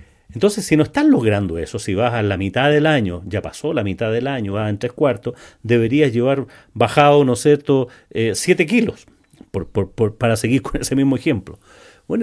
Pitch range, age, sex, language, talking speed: 105-155 Hz, 40-59, male, Spanish, 205 wpm